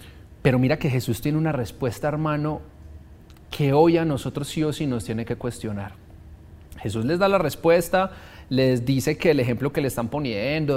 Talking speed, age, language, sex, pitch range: 185 wpm, 30-49, Spanish, male, 115-155 Hz